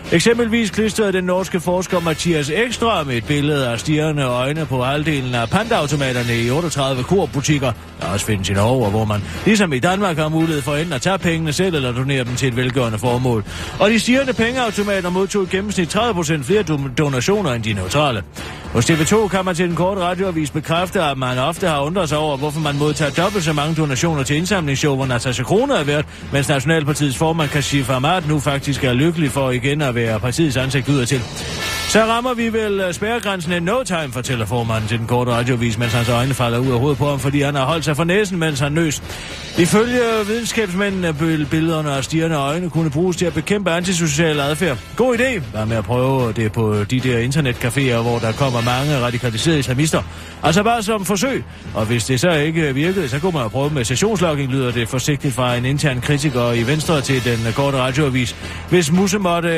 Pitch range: 125-180 Hz